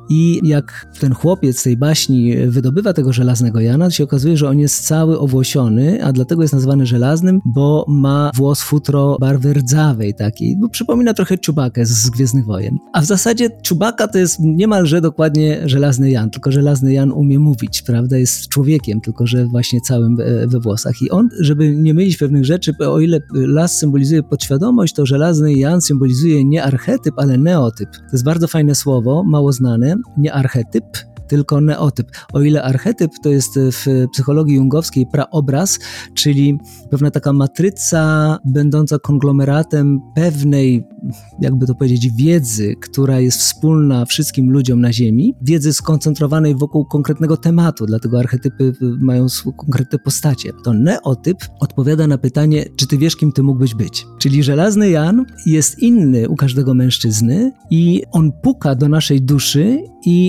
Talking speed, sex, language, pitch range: 155 wpm, male, Polish, 130-155 Hz